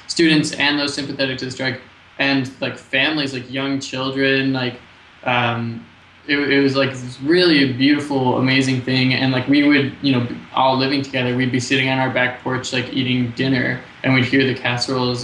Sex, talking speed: male, 190 wpm